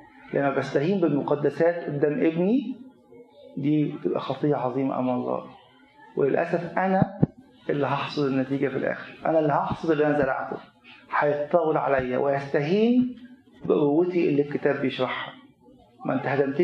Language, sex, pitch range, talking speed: Arabic, male, 140-175 Hz, 125 wpm